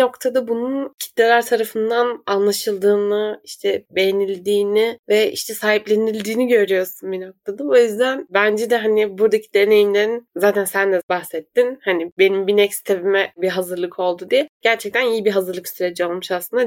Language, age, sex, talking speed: Turkish, 20-39, female, 145 wpm